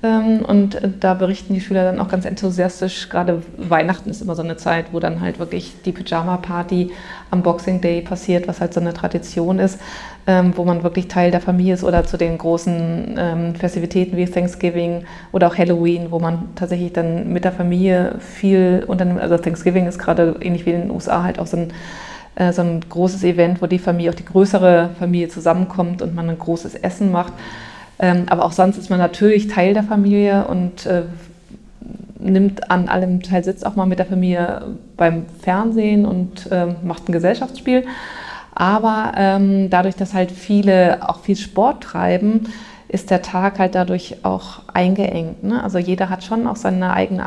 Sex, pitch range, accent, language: female, 175-195 Hz, German, German